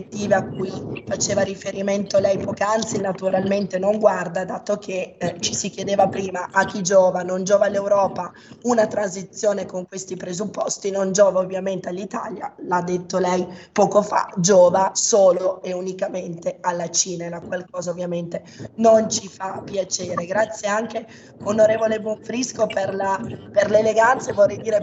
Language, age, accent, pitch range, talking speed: Italian, 20-39, native, 190-215 Hz, 145 wpm